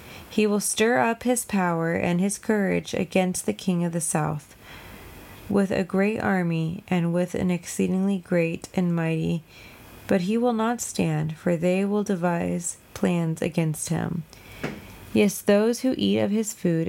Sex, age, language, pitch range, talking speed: female, 20-39, English, 155-200 Hz, 160 wpm